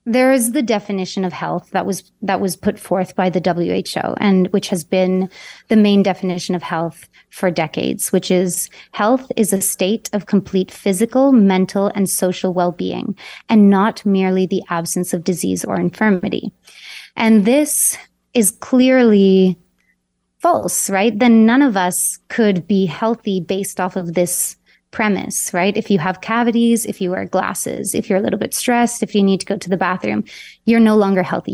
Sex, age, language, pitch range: female, 30-49, English, 185-210 Hz